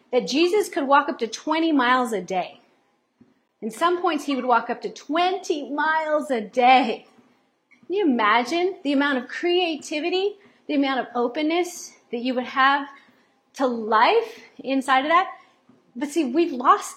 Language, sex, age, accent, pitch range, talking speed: English, female, 40-59, American, 245-325 Hz, 165 wpm